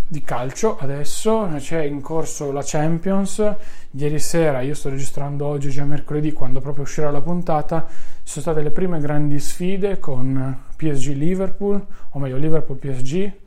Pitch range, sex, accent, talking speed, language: 135-170 Hz, male, native, 145 wpm, Italian